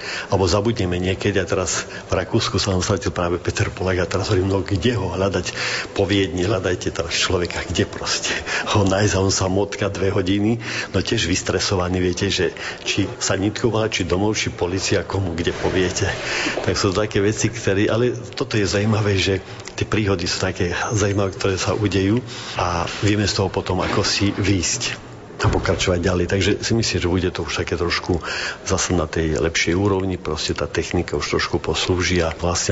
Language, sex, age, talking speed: Slovak, male, 50-69, 180 wpm